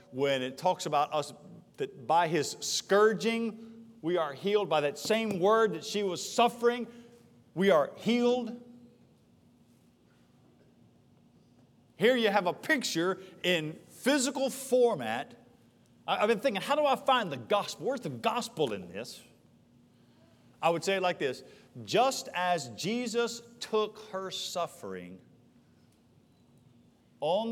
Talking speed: 125 wpm